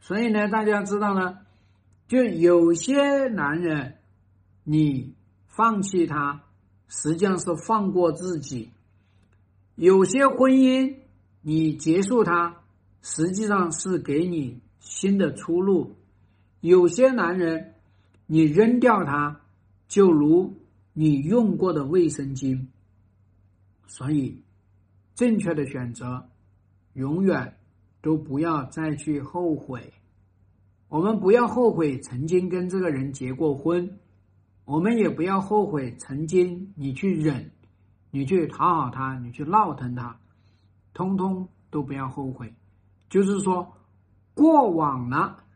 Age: 50-69